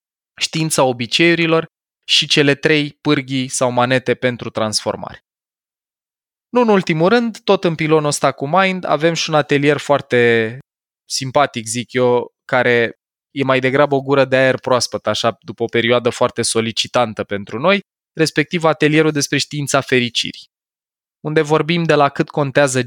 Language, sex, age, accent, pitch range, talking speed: Romanian, male, 20-39, native, 120-150 Hz, 145 wpm